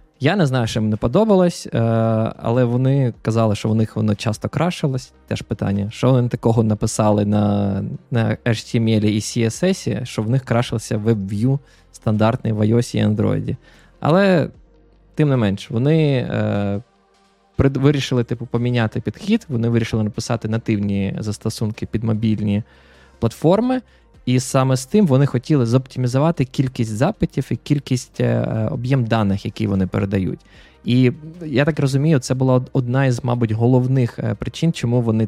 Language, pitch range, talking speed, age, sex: Ukrainian, 110-135 Hz, 145 wpm, 20-39, male